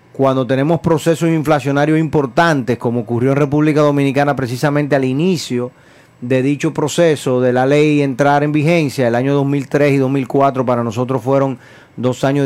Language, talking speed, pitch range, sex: Spanish, 155 wpm, 130-155 Hz, male